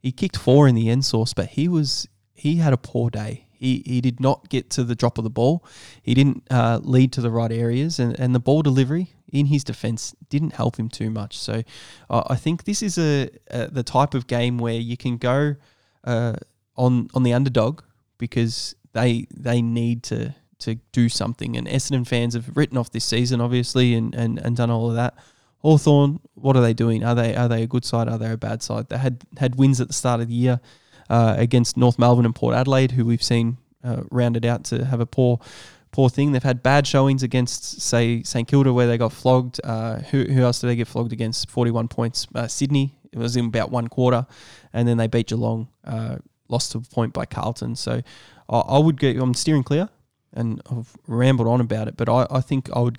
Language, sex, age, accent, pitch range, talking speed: English, male, 20-39, Australian, 115-130 Hz, 230 wpm